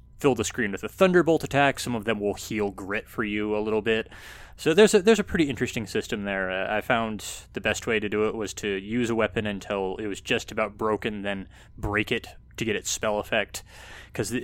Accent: American